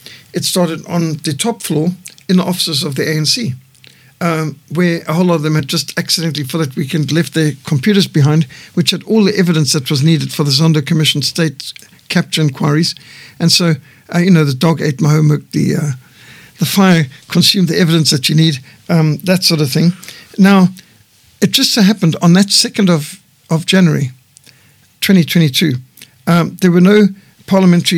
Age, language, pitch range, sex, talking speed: 60-79, English, 150-180 Hz, male, 185 wpm